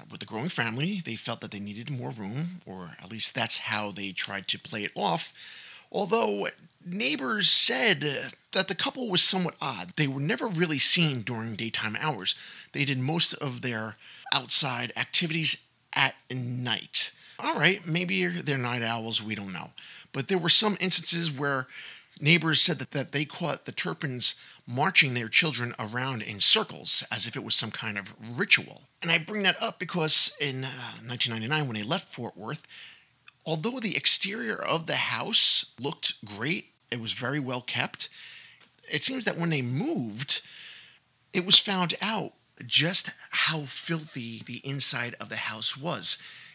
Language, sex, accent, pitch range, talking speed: English, male, American, 120-175 Hz, 170 wpm